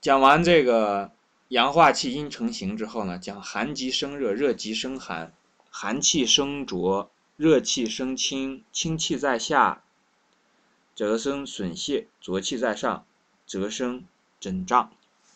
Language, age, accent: Chinese, 20-39, native